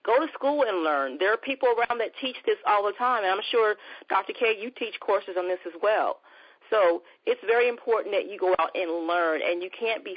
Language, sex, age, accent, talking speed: English, female, 40-59, American, 240 wpm